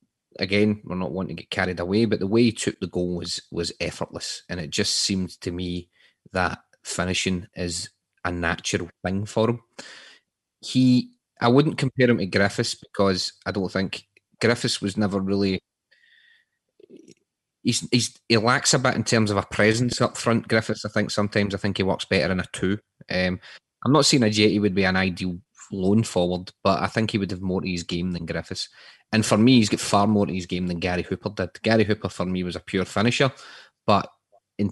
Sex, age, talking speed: male, 30-49, 205 wpm